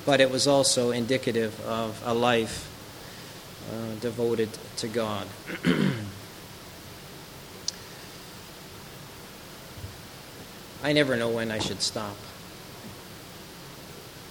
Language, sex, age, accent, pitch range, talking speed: English, male, 40-59, American, 105-130 Hz, 80 wpm